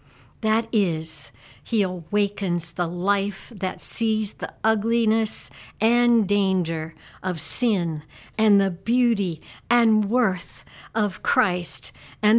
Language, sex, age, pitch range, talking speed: English, female, 60-79, 170-230 Hz, 105 wpm